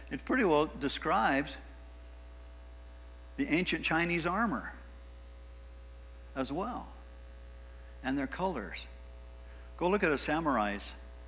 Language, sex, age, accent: English, male, 60-79, American